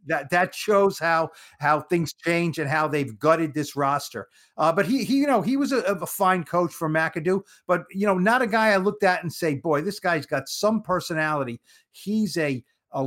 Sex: male